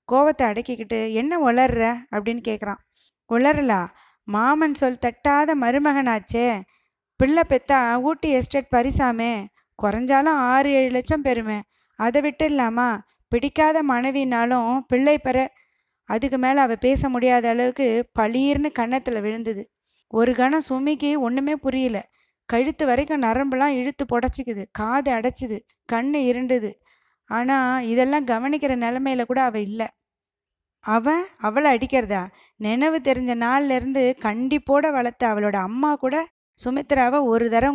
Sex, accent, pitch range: female, native, 230-280 Hz